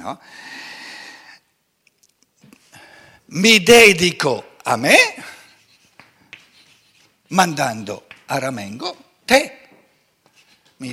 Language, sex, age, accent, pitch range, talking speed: Italian, male, 60-79, native, 135-220 Hz, 55 wpm